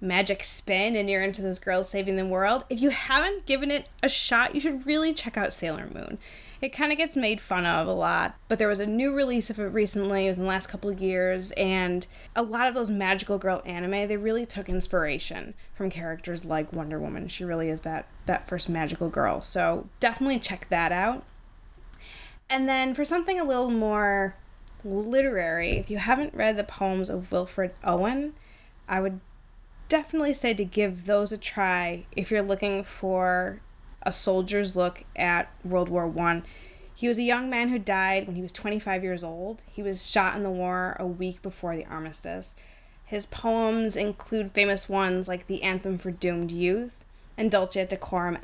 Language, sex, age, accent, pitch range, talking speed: English, female, 20-39, American, 180-220 Hz, 190 wpm